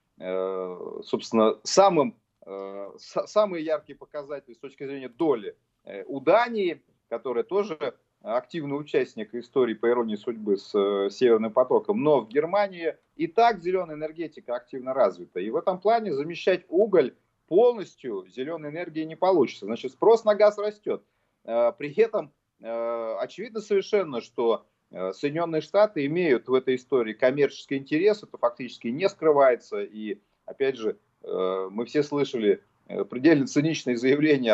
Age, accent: 30-49, native